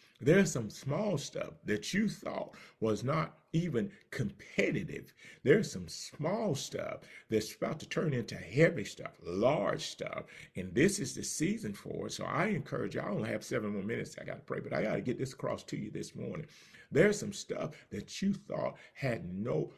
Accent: American